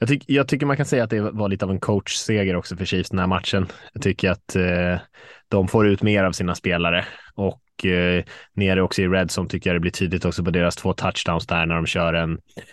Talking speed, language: 245 wpm, Swedish